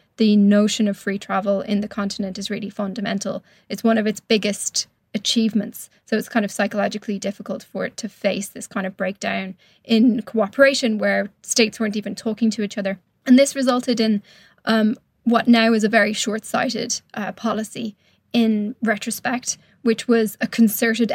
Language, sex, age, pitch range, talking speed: English, female, 10-29, 200-230 Hz, 165 wpm